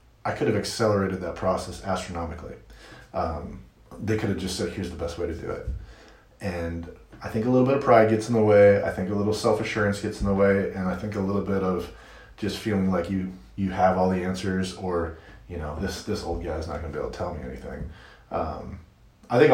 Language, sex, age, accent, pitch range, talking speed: English, male, 30-49, American, 90-110 Hz, 235 wpm